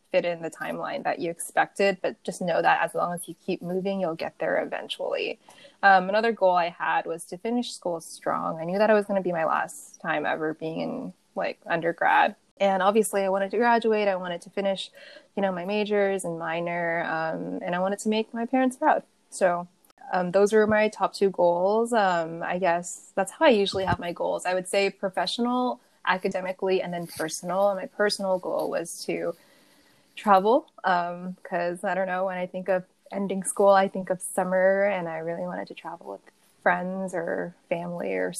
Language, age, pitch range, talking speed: English, 20-39, 175-215 Hz, 205 wpm